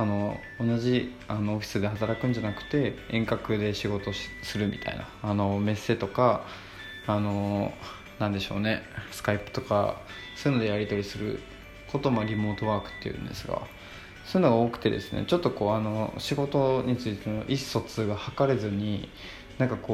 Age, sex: 20-39, male